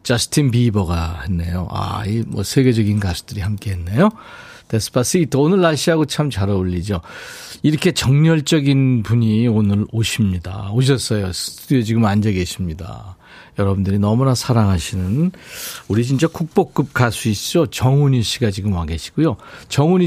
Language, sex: Korean, male